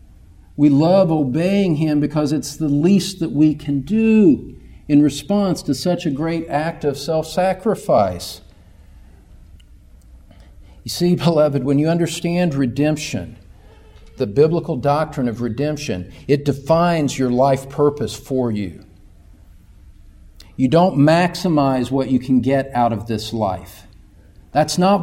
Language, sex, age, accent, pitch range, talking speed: English, male, 50-69, American, 90-145 Hz, 125 wpm